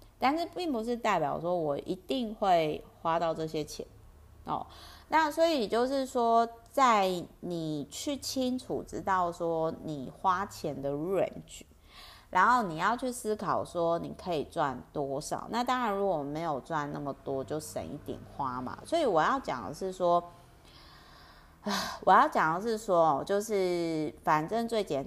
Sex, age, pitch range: female, 30-49, 150-200 Hz